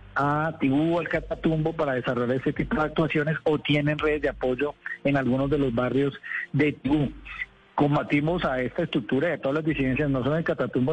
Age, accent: 40-59, Colombian